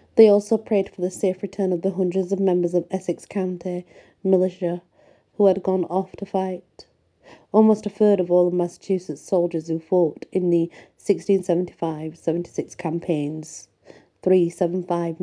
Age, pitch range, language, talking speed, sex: 40-59, 165-185 Hz, English, 145 wpm, female